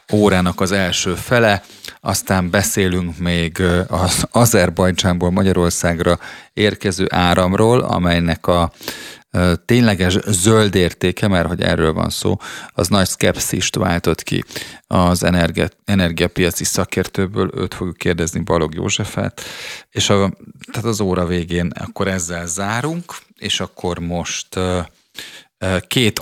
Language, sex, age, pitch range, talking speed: Hungarian, male, 30-49, 85-100 Hz, 105 wpm